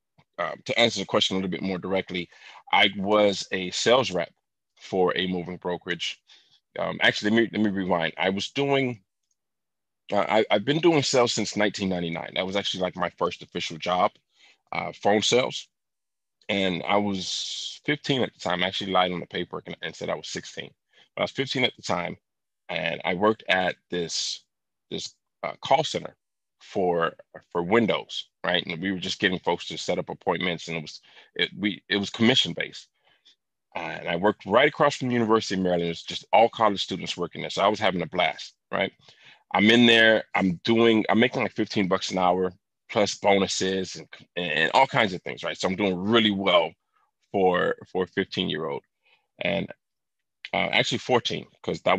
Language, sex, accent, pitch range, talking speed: English, male, American, 90-115 Hz, 195 wpm